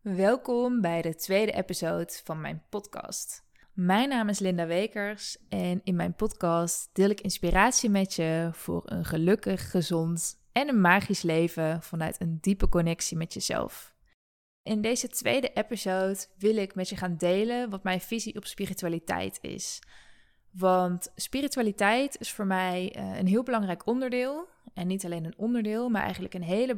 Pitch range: 175-215 Hz